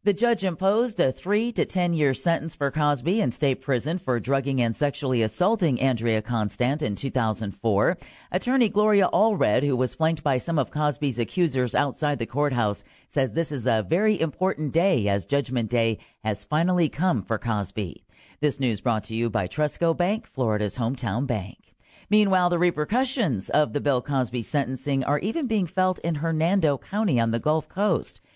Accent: American